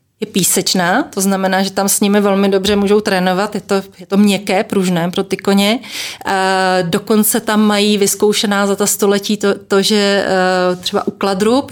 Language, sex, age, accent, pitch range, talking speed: Czech, female, 30-49, native, 185-215 Hz, 185 wpm